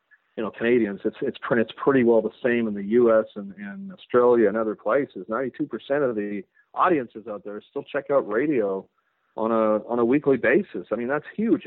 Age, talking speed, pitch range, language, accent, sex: 40-59, 200 wpm, 110-145 Hz, English, American, male